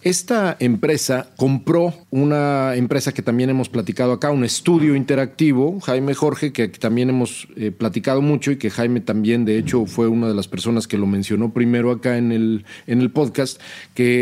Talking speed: 175 wpm